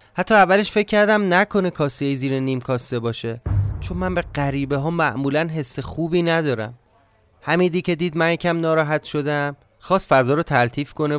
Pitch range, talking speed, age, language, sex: 125-170 Hz, 165 wpm, 30-49, Persian, male